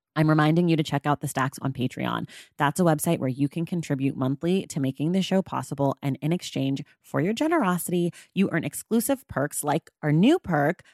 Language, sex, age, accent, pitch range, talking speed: English, female, 30-49, American, 145-200 Hz, 205 wpm